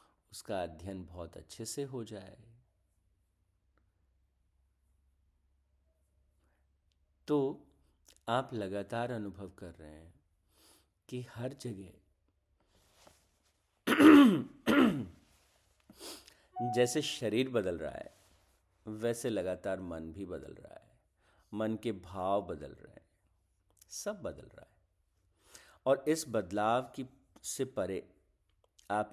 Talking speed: 95 wpm